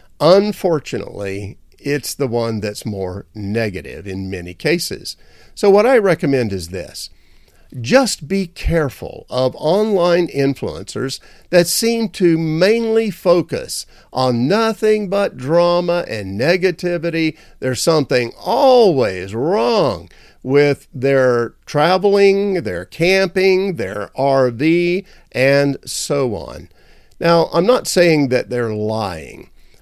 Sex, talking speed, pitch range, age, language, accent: male, 110 wpm, 115-175 Hz, 50-69, English, American